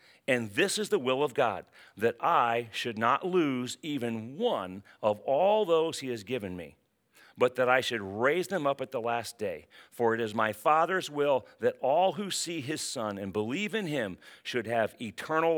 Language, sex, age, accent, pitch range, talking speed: English, male, 40-59, American, 115-165 Hz, 195 wpm